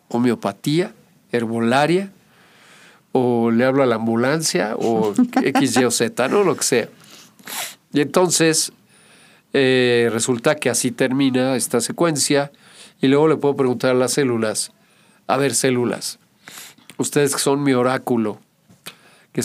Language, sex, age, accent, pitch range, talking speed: Spanish, male, 50-69, Mexican, 125-160 Hz, 135 wpm